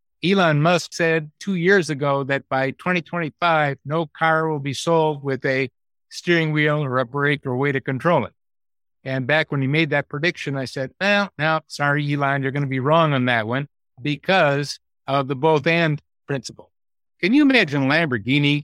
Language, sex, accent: English, male, American